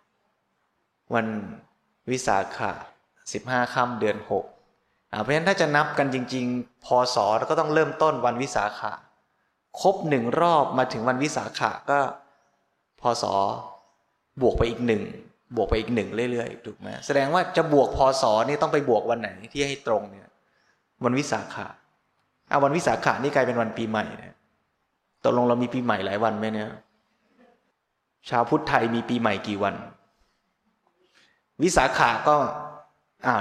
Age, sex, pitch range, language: 20-39, male, 115-145 Hz, Thai